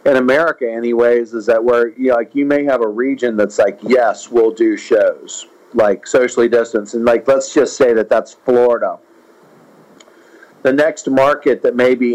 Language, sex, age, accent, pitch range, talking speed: English, male, 40-59, American, 115-145 Hz, 185 wpm